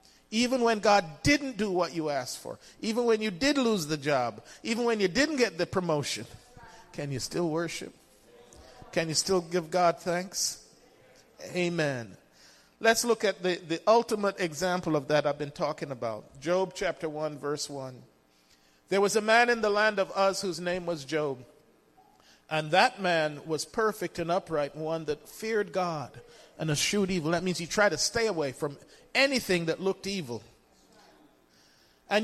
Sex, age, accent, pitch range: male, 50-69, American, 155-215 Hz